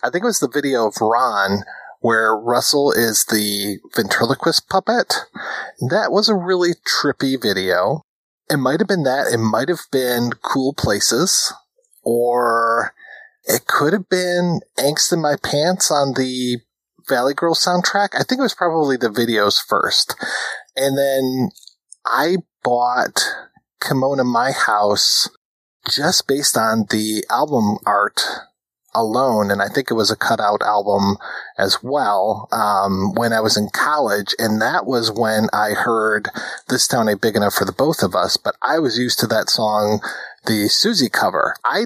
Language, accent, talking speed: English, American, 155 wpm